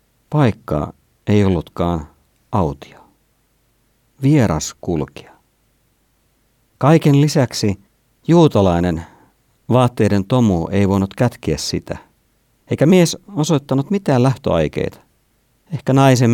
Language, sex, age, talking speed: Finnish, male, 50-69, 80 wpm